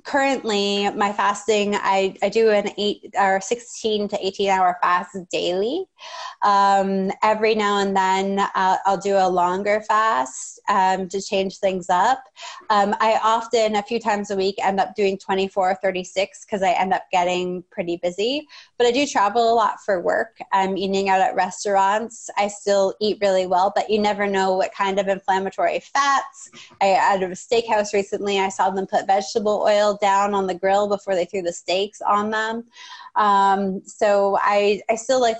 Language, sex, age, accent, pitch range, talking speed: English, female, 20-39, American, 190-220 Hz, 180 wpm